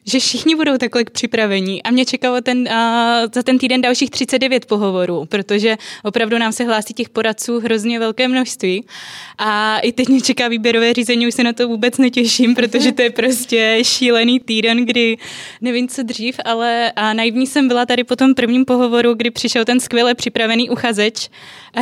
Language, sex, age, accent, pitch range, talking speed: Czech, female, 20-39, native, 215-245 Hz, 180 wpm